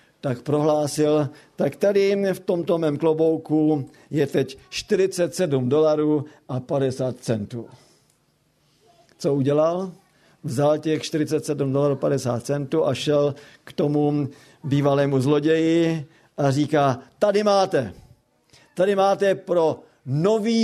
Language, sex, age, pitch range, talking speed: Slovak, male, 50-69, 135-165 Hz, 110 wpm